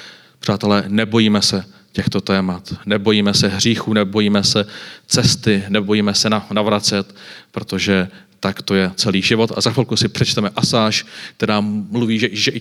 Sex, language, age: male, Czech, 30-49